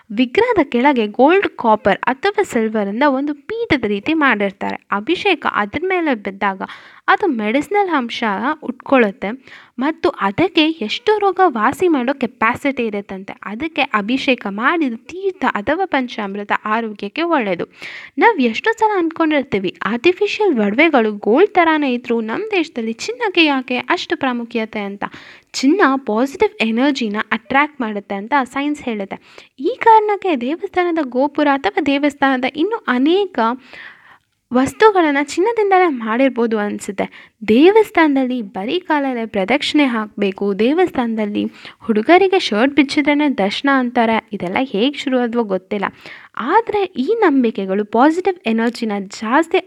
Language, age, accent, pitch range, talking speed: Kannada, 10-29, native, 220-335 Hz, 105 wpm